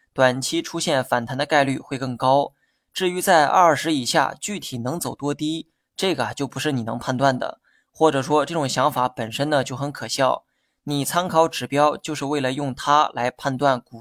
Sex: male